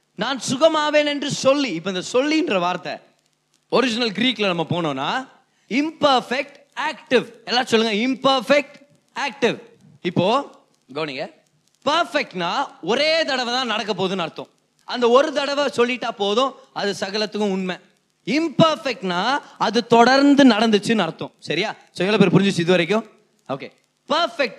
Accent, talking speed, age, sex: native, 160 wpm, 20-39, male